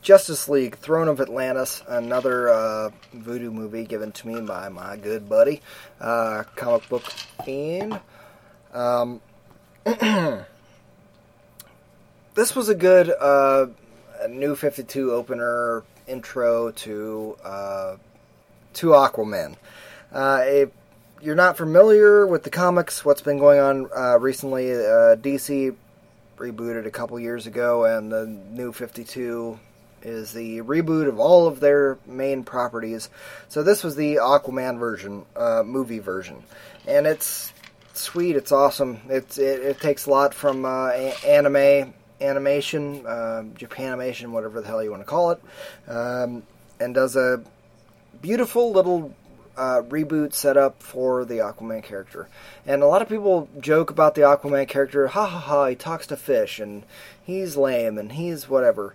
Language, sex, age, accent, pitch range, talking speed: English, male, 20-39, American, 115-150 Hz, 140 wpm